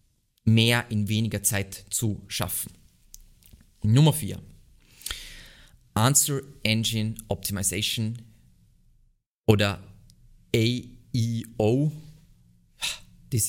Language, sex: German, male